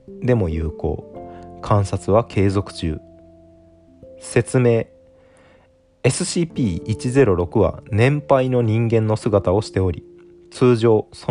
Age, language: 20-39, Japanese